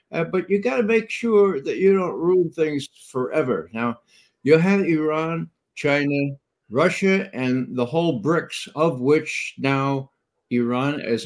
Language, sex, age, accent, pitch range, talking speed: English, male, 60-79, American, 130-185 Hz, 150 wpm